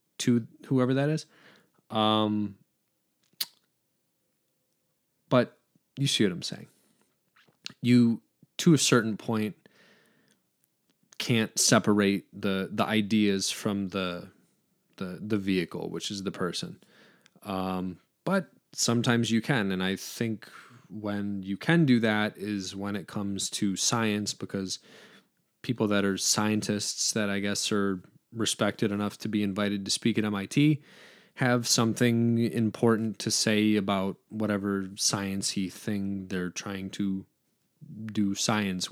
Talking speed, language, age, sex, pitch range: 125 wpm, English, 20-39, male, 100-115 Hz